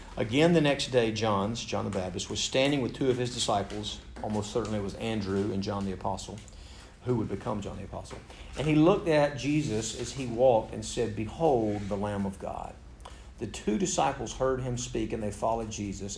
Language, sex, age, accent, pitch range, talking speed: English, male, 40-59, American, 100-115 Hz, 205 wpm